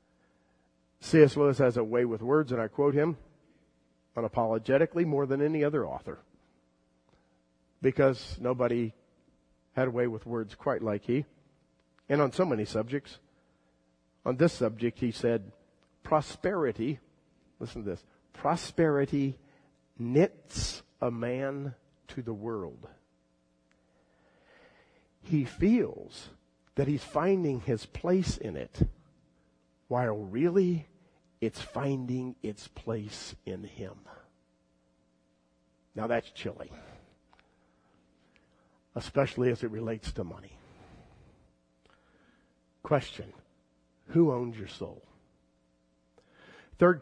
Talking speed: 100 wpm